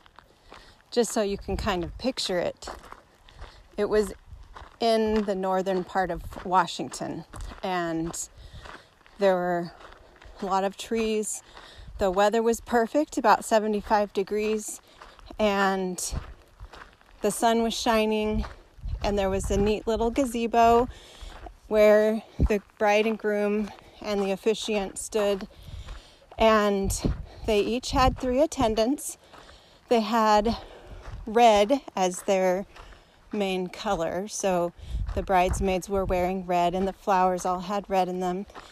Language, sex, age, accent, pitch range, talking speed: English, female, 30-49, American, 190-225 Hz, 120 wpm